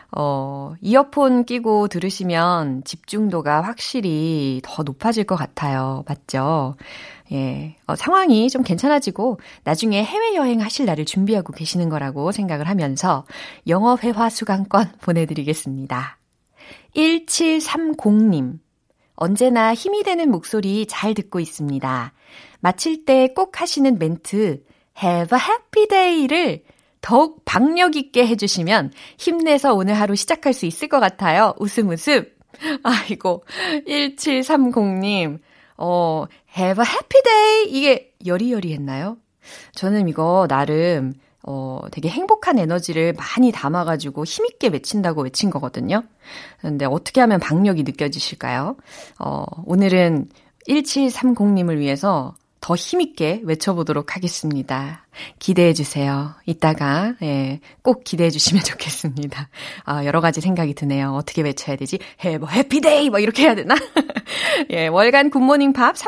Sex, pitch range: female, 155-260 Hz